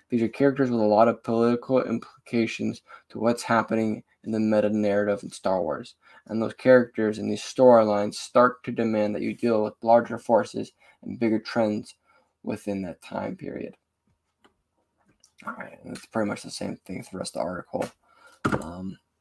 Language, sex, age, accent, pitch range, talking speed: English, male, 10-29, American, 105-120 Hz, 170 wpm